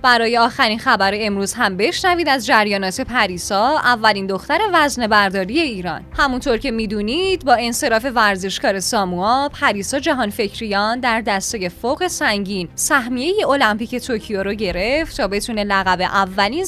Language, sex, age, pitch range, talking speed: Persian, female, 10-29, 205-295 Hz, 135 wpm